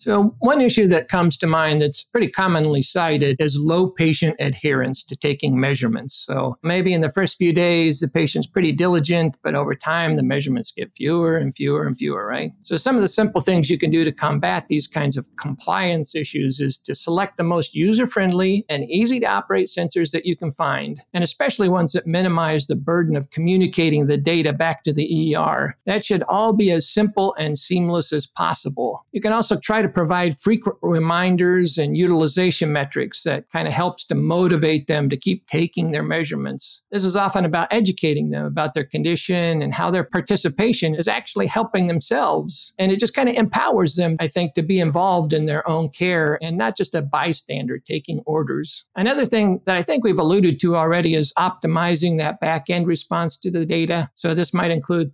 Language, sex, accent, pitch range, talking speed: English, male, American, 155-185 Hz, 195 wpm